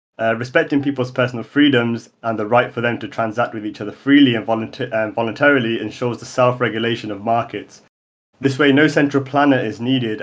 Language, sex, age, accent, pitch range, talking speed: English, male, 30-49, British, 110-130 Hz, 190 wpm